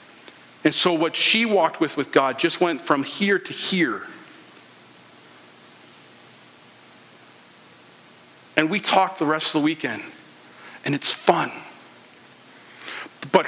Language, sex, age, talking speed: English, male, 40-59, 115 wpm